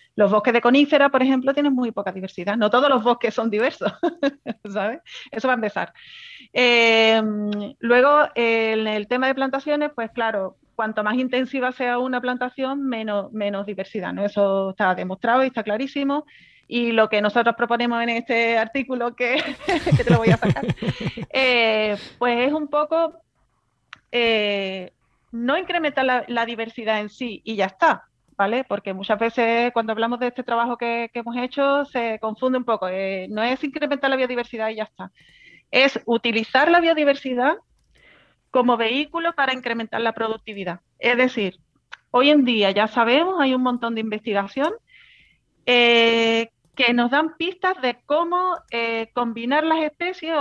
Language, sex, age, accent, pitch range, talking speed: Spanish, female, 30-49, Spanish, 220-275 Hz, 160 wpm